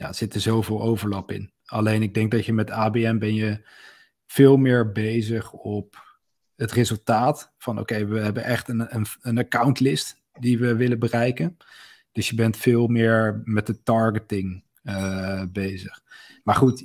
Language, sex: Dutch, male